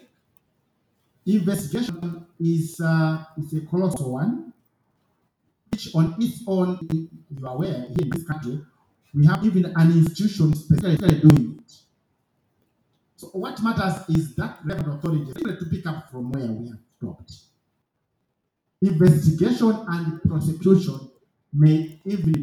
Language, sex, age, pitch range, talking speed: English, male, 50-69, 145-180 Hz, 130 wpm